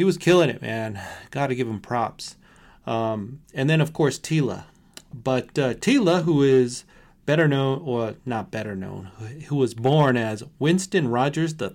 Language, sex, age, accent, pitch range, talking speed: English, male, 30-49, American, 115-145 Hz, 175 wpm